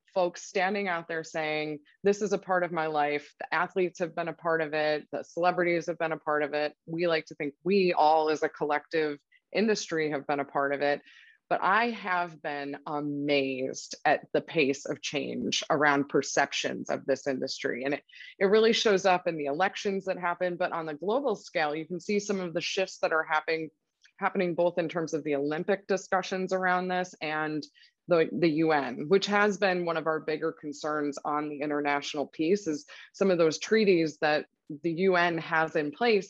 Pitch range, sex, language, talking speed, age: 155-185 Hz, female, English, 200 wpm, 20-39